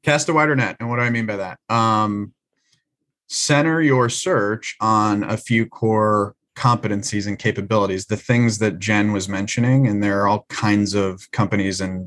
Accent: American